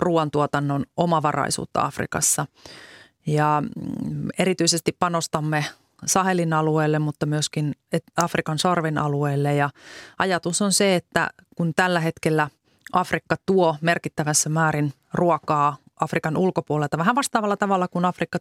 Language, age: Finnish, 30-49